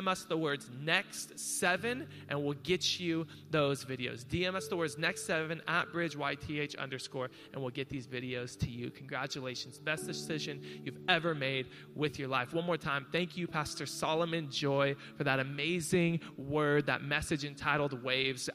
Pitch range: 140-185 Hz